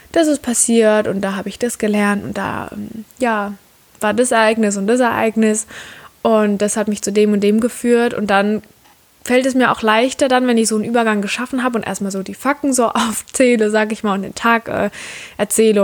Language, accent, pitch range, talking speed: German, German, 200-230 Hz, 215 wpm